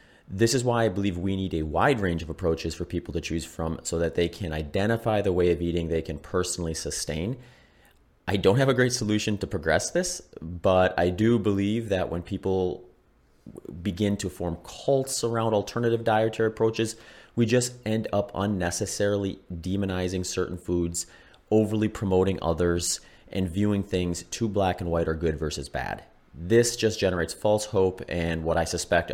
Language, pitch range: English, 85-110 Hz